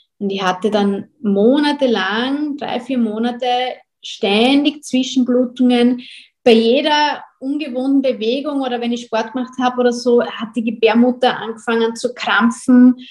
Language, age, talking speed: German, 20-39, 130 wpm